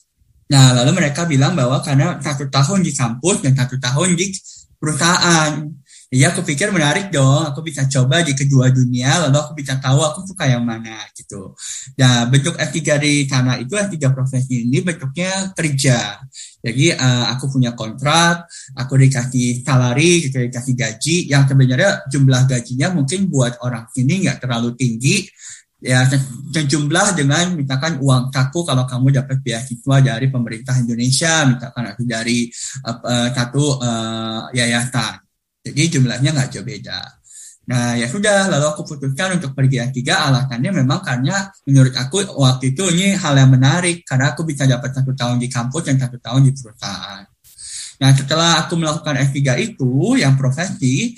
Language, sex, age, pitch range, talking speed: English, male, 10-29, 125-155 Hz, 155 wpm